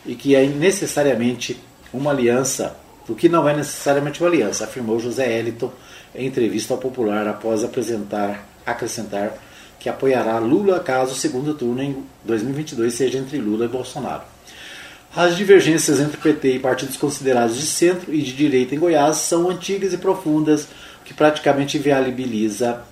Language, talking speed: Portuguese, 150 wpm